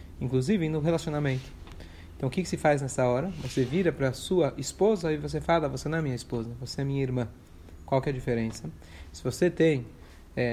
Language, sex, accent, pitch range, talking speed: Portuguese, male, Brazilian, 130-170 Hz, 215 wpm